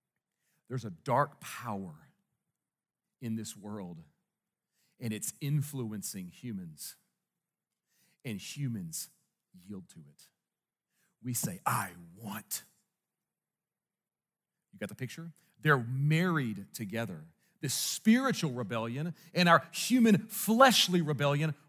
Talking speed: 95 wpm